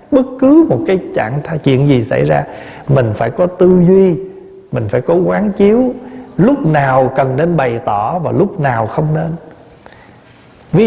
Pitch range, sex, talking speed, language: 140-210 Hz, male, 170 wpm, Vietnamese